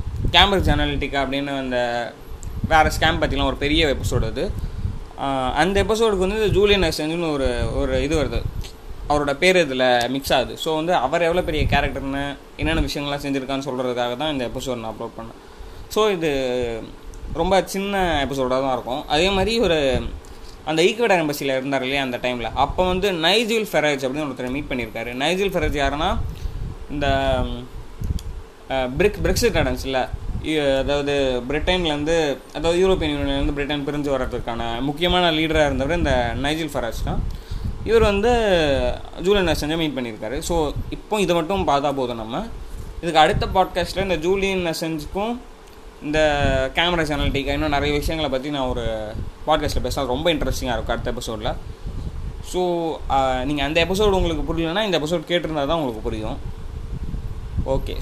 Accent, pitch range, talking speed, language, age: native, 120-165 Hz, 140 wpm, Tamil, 20-39